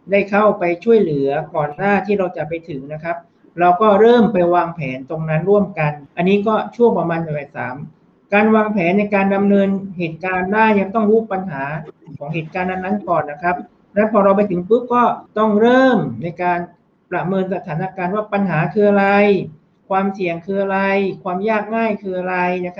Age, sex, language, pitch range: 60-79, male, Thai, 170-205 Hz